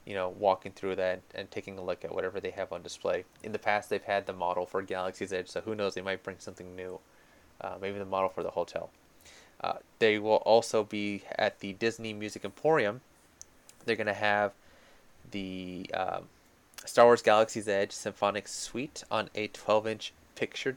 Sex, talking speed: male, 190 wpm